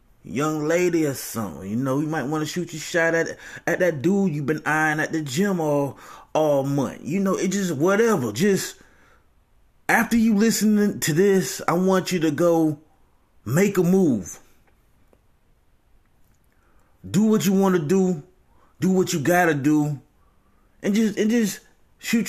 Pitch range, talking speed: 125-180 Hz, 165 wpm